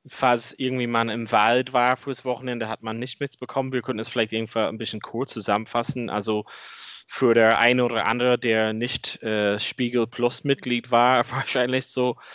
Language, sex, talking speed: German, male, 175 wpm